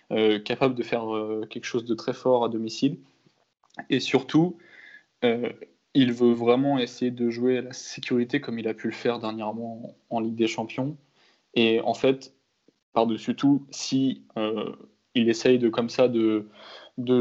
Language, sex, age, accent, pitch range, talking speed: French, male, 20-39, French, 115-135 Hz, 180 wpm